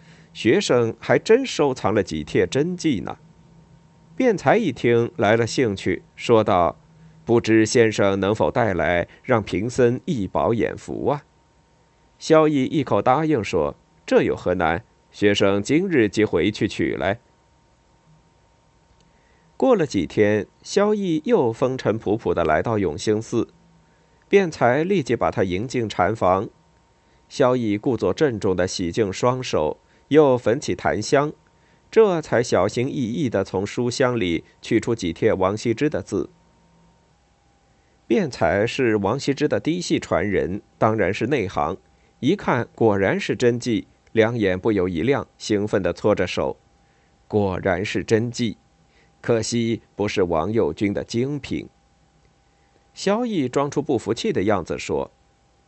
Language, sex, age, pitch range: Chinese, male, 50-69, 105-150 Hz